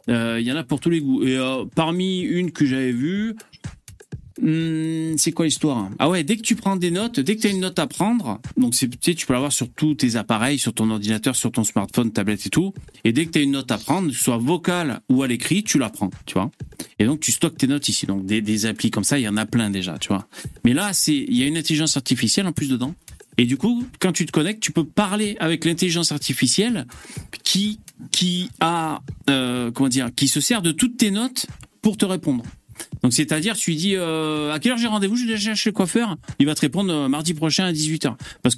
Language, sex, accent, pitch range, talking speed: French, male, French, 135-200 Hz, 255 wpm